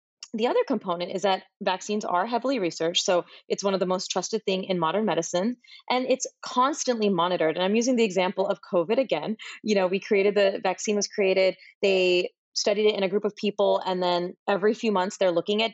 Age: 30-49